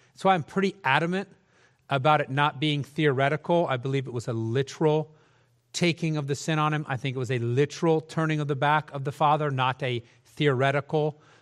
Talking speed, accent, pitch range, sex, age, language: 195 wpm, American, 130-165 Hz, male, 40-59, English